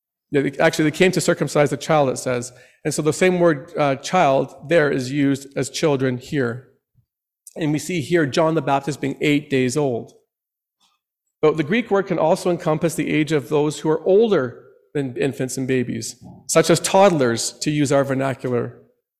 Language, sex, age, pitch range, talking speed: English, male, 40-59, 135-165 Hz, 180 wpm